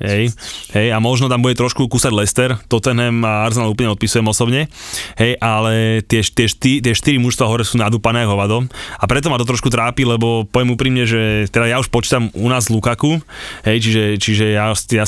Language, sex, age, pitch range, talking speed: Slovak, male, 20-39, 110-135 Hz, 200 wpm